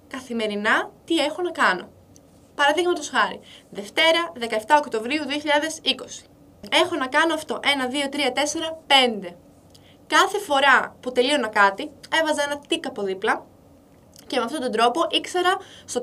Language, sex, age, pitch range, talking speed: Greek, female, 20-39, 215-295 Hz, 140 wpm